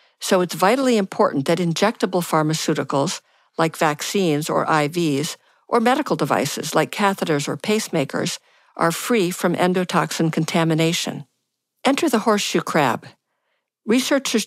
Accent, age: American, 50-69